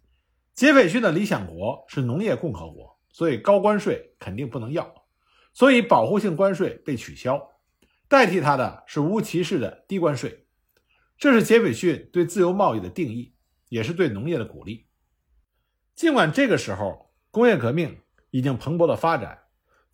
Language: Chinese